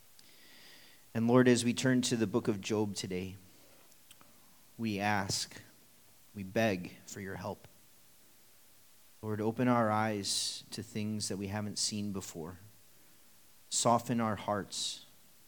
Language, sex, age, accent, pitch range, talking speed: English, male, 30-49, American, 100-125 Hz, 125 wpm